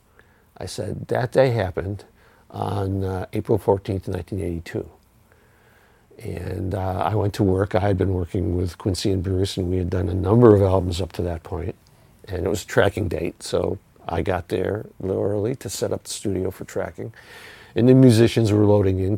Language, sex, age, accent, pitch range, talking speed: English, male, 50-69, American, 95-115 Hz, 195 wpm